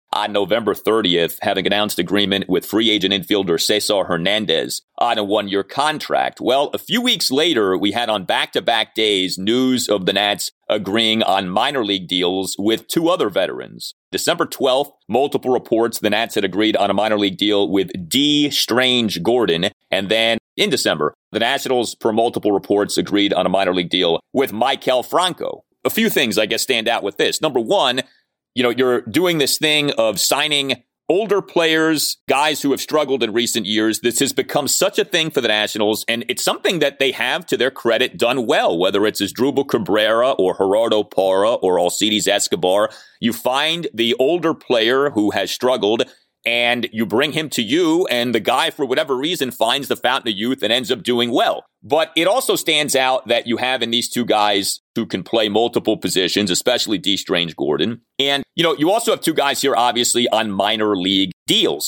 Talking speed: 195 wpm